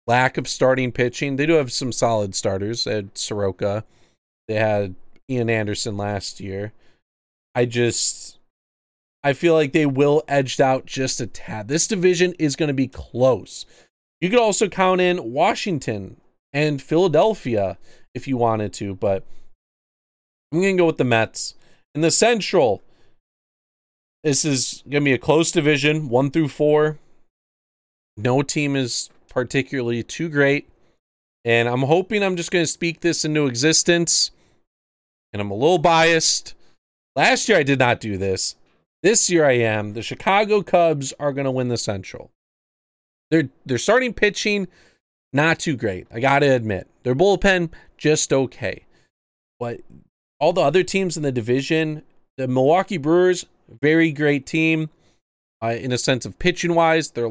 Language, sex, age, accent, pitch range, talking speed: English, male, 30-49, American, 115-165 Hz, 155 wpm